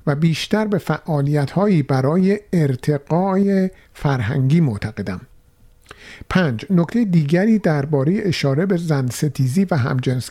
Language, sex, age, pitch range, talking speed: Persian, male, 50-69, 130-175 Hz, 105 wpm